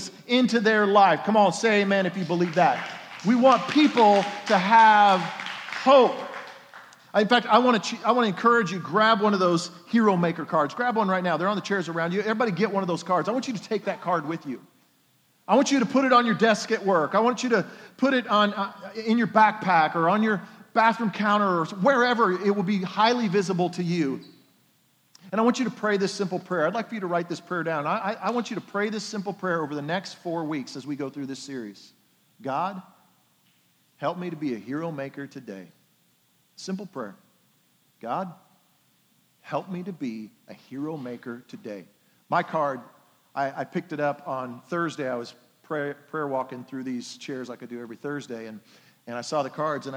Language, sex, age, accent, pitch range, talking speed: English, male, 40-59, American, 145-210 Hz, 215 wpm